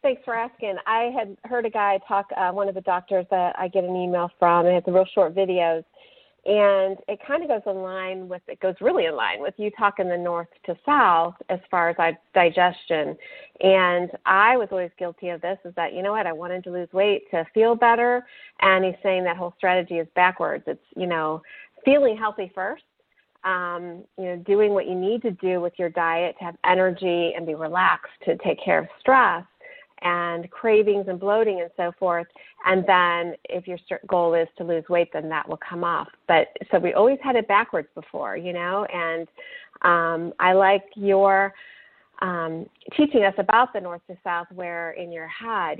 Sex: female